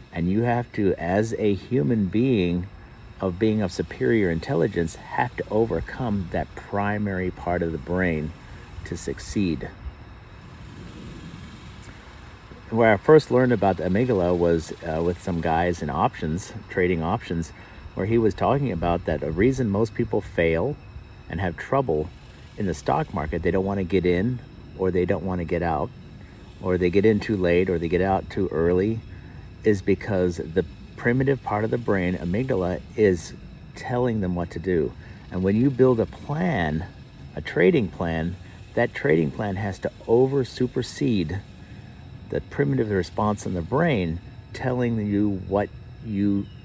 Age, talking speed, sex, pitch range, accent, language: 50-69, 160 wpm, male, 90-115 Hz, American, English